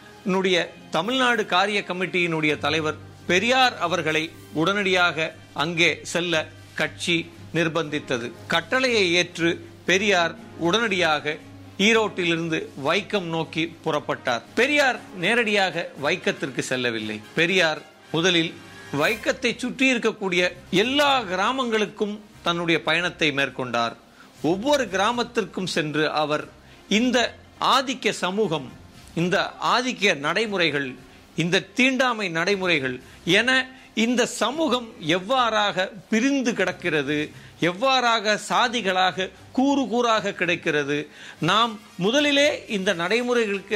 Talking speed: 85 wpm